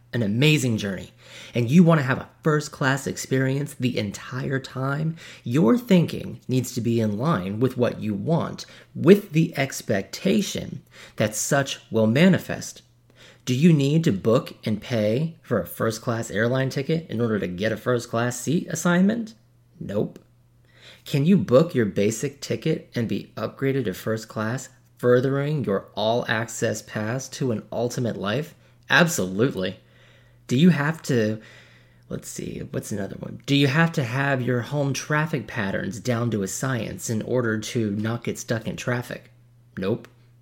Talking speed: 155 wpm